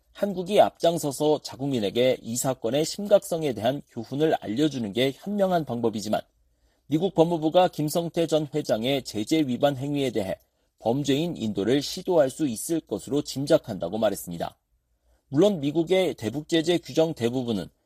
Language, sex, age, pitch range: Korean, male, 40-59, 130-170 Hz